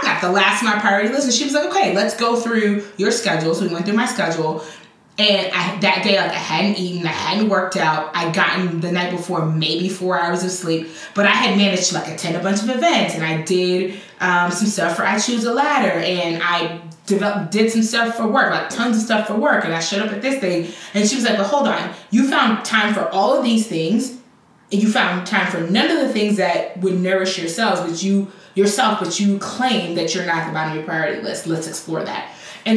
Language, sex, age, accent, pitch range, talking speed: English, female, 20-39, American, 175-215 Hz, 245 wpm